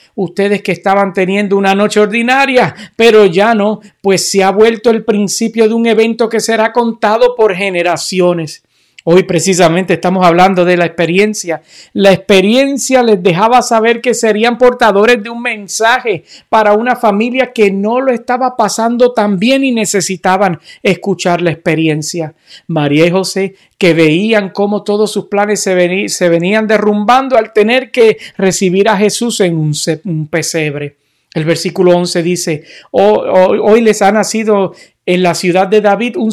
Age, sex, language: 50-69, male, Spanish